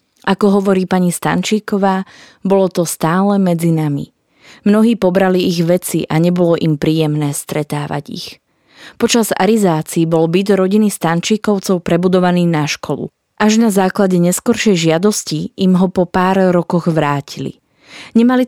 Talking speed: 130 wpm